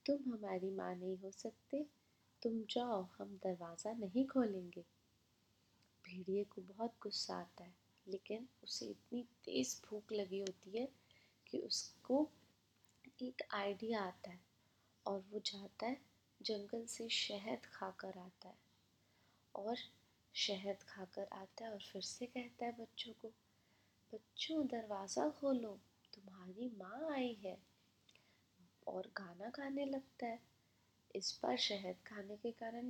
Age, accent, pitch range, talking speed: 20-39, native, 185-245 Hz, 135 wpm